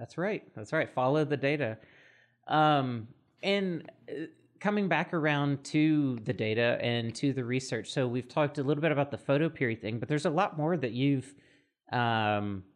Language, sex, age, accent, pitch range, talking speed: English, male, 30-49, American, 115-140 Hz, 180 wpm